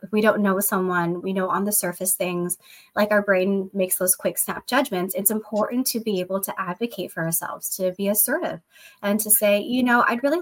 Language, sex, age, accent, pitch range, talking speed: English, female, 20-39, American, 185-225 Hz, 215 wpm